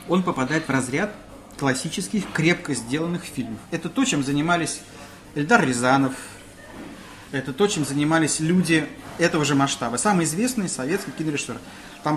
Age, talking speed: 30-49, 135 wpm